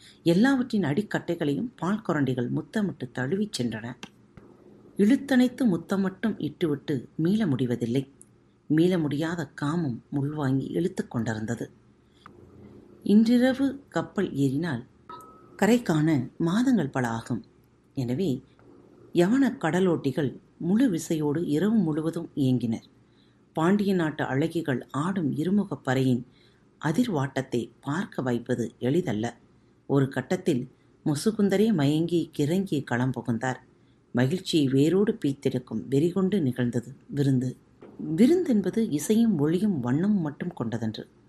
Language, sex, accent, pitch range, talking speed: Tamil, female, native, 130-190 Hz, 90 wpm